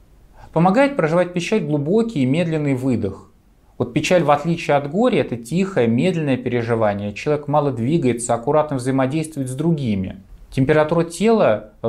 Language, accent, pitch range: Russian, native, 125-175 Hz